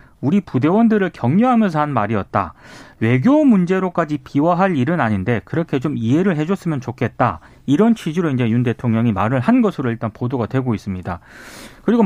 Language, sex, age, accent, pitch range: Korean, male, 30-49, native, 125-200 Hz